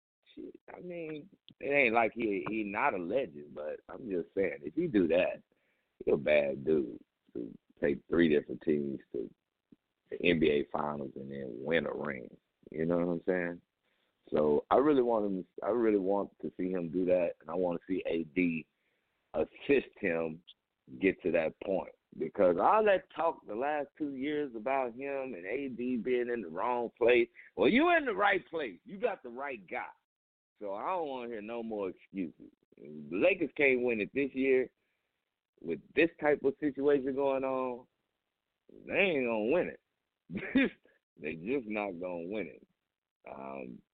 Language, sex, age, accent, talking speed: English, male, 50-69, American, 180 wpm